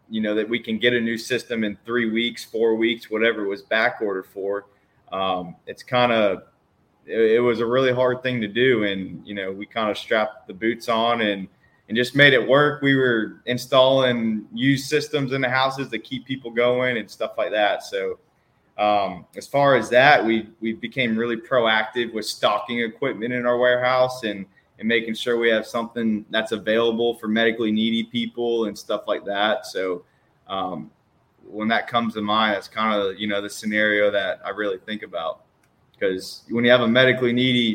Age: 20-39